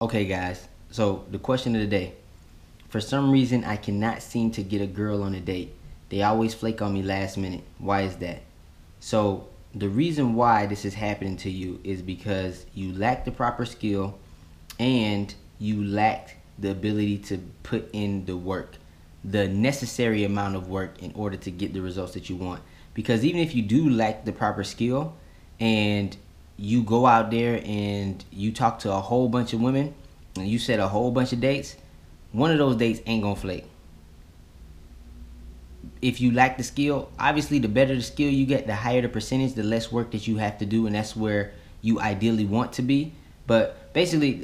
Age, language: 20-39, English